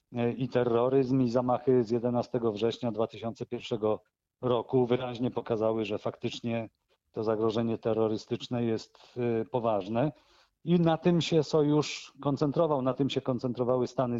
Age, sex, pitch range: 40-59, male, 115-130 Hz